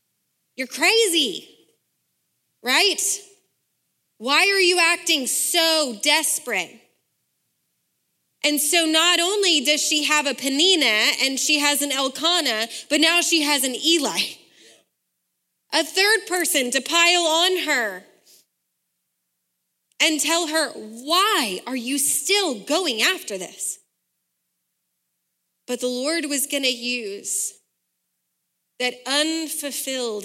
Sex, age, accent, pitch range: female, 30-49, American, 230-315 Hz